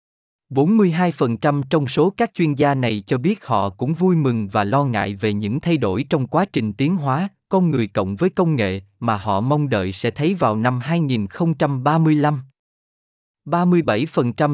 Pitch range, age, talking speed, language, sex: 115-165 Hz, 20-39, 160 wpm, Vietnamese, male